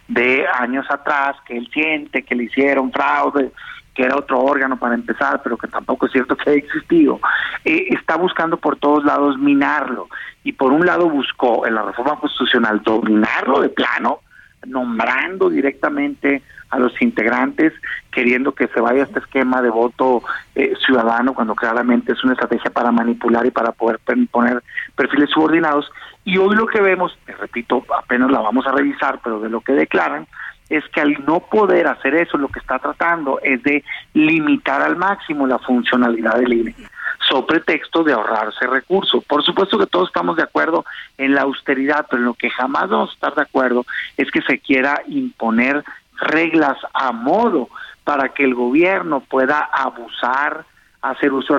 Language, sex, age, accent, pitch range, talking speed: Spanish, male, 40-59, Mexican, 120-150 Hz, 175 wpm